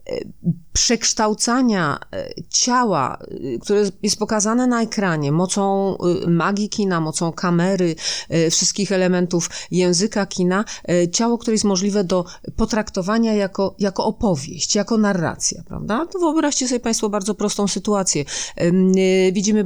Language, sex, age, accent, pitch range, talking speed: Polish, female, 30-49, native, 175-215 Hz, 105 wpm